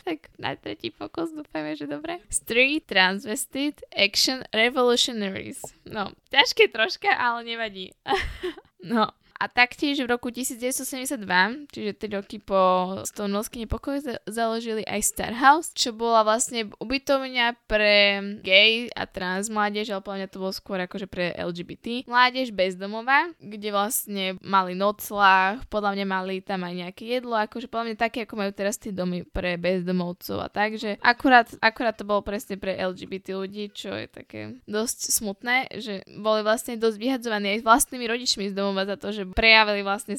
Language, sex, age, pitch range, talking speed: Slovak, female, 10-29, 195-240 Hz, 160 wpm